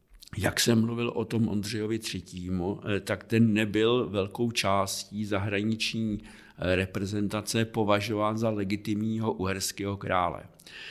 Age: 50-69